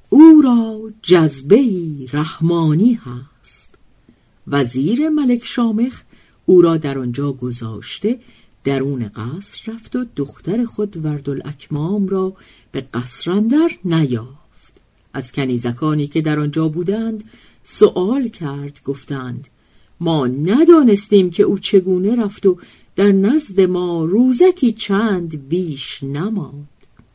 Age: 50-69